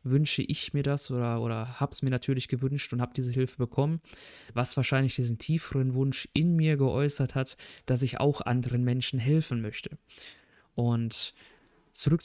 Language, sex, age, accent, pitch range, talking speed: German, male, 20-39, German, 125-150 Hz, 160 wpm